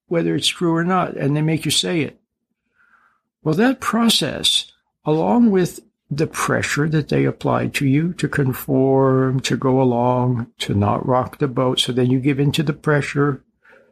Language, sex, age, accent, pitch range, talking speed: English, male, 60-79, American, 125-160 Hz, 175 wpm